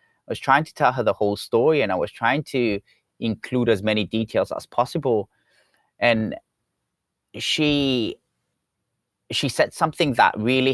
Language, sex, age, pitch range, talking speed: English, male, 30-49, 105-135 Hz, 150 wpm